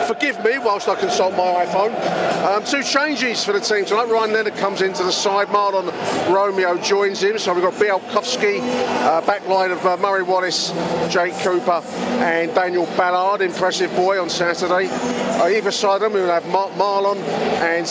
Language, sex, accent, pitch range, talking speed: English, male, British, 180-220 Hz, 180 wpm